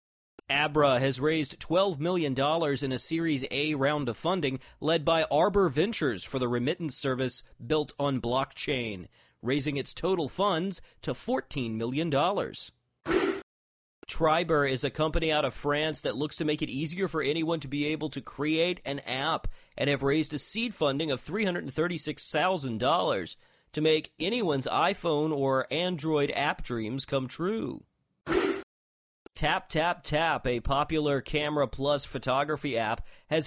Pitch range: 140-170 Hz